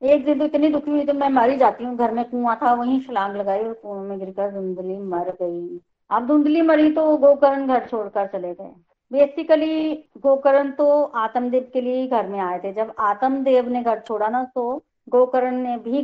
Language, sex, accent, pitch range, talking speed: Hindi, female, native, 220-270 Hz, 210 wpm